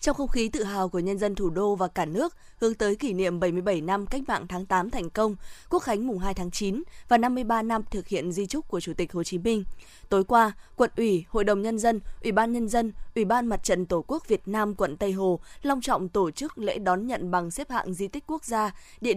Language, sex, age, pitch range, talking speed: Vietnamese, female, 20-39, 185-230 Hz, 255 wpm